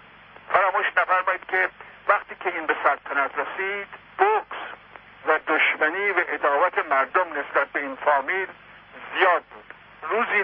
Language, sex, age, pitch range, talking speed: Persian, male, 60-79, 155-205 Hz, 125 wpm